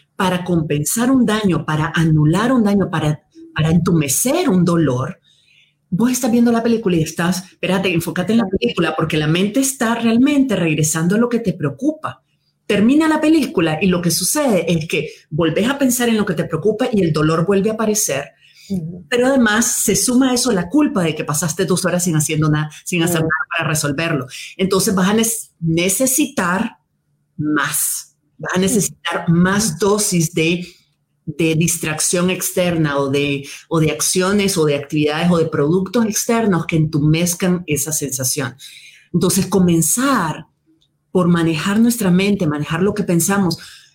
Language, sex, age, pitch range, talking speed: Spanish, female, 40-59, 160-205 Hz, 165 wpm